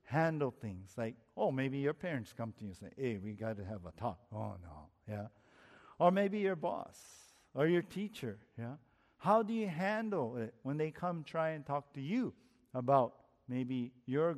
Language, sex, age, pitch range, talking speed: English, male, 50-69, 120-185 Hz, 190 wpm